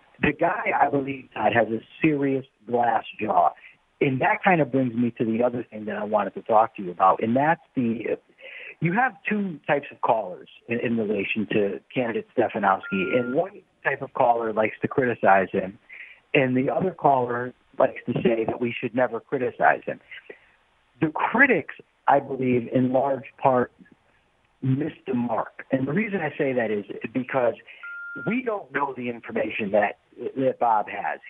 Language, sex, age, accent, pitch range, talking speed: English, male, 50-69, American, 120-155 Hz, 175 wpm